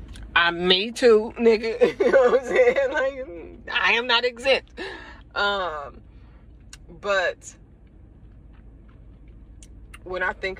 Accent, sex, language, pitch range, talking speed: American, female, English, 160-265 Hz, 110 wpm